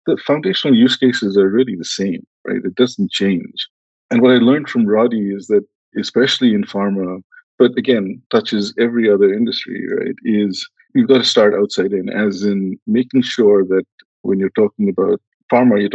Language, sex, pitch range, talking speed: English, male, 95-140 Hz, 180 wpm